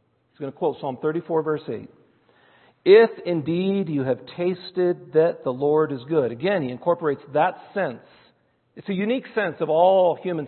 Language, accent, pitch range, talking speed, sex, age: English, American, 135-180 Hz, 170 wpm, male, 50-69